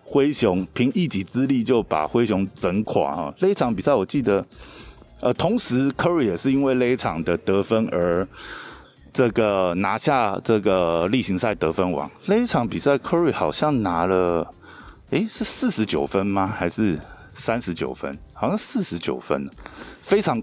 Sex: male